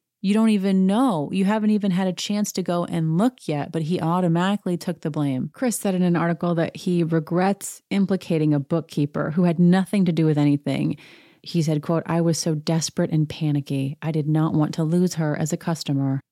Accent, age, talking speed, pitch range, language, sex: American, 30-49, 215 wpm, 155-190 Hz, English, female